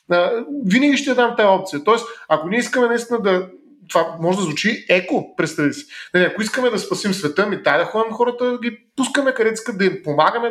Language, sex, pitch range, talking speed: Bulgarian, male, 160-230 Hz, 205 wpm